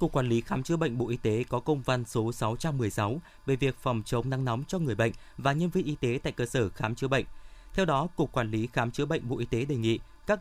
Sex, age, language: male, 20-39, Vietnamese